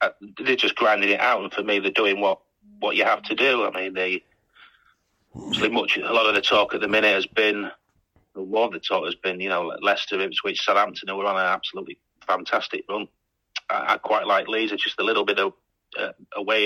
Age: 40-59